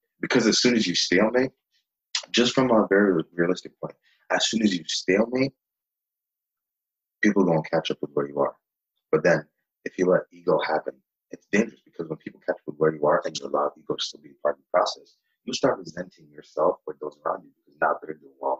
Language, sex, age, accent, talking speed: English, male, 30-49, American, 215 wpm